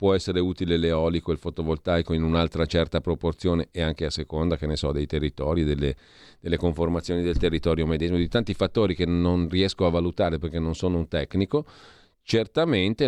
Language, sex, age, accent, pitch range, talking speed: Italian, male, 40-59, native, 80-95 Hz, 180 wpm